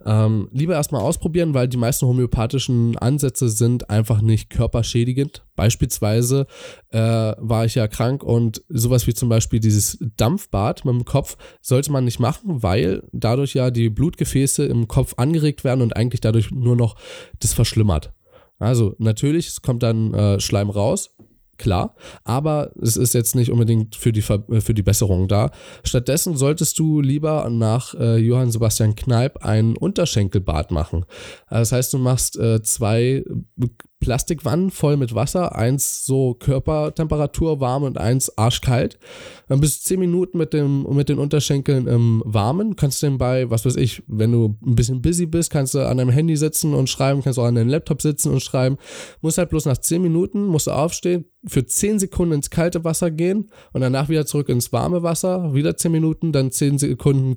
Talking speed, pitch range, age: 175 wpm, 115-150 Hz, 10-29